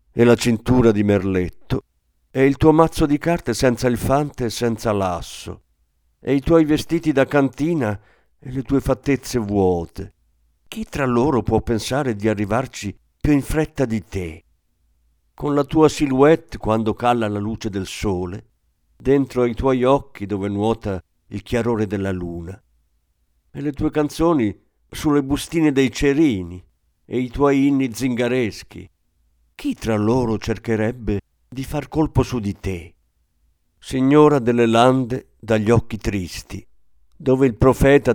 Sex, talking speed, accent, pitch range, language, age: male, 145 wpm, native, 95-135 Hz, Italian, 50-69